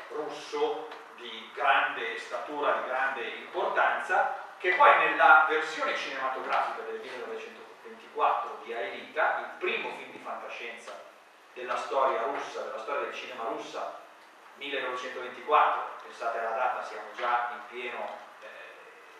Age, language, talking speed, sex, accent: 40-59, Italian, 120 wpm, male, native